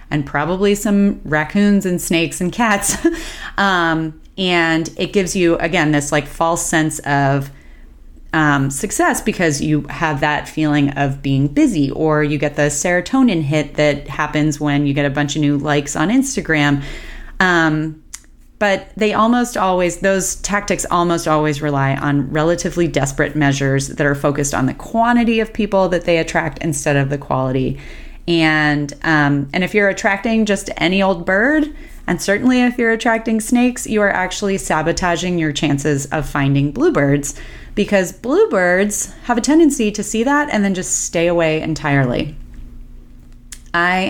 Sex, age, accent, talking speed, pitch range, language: female, 30-49, American, 160 wpm, 150-205 Hz, English